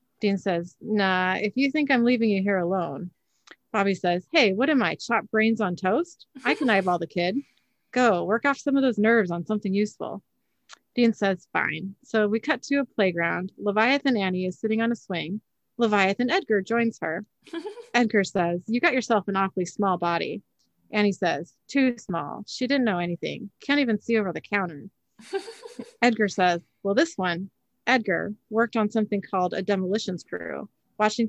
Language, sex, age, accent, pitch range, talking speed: English, female, 30-49, American, 190-240 Hz, 180 wpm